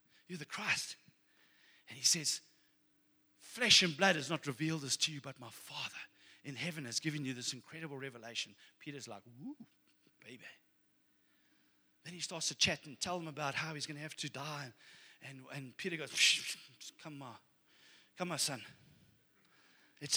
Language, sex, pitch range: English, male, 115-160 Hz